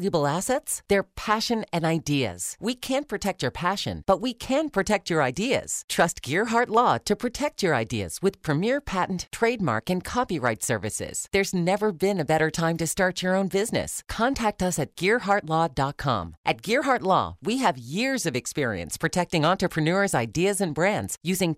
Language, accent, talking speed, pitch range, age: English, American, 165 wpm, 145-215 Hz, 40-59